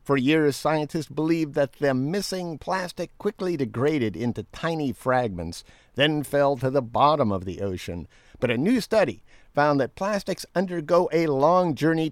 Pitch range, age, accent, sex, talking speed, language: 120-165 Hz, 50-69, American, male, 160 wpm, English